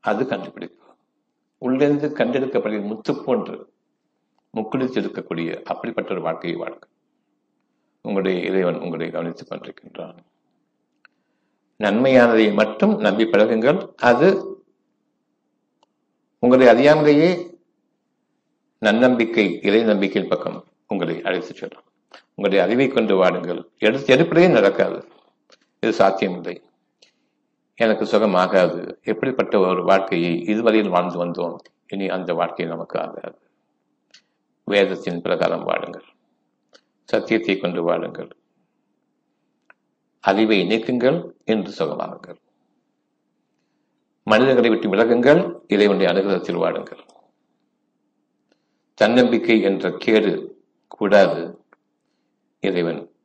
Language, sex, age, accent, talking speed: Tamil, male, 60-79, native, 80 wpm